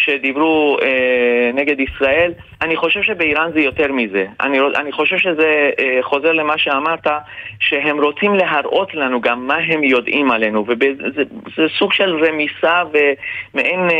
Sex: male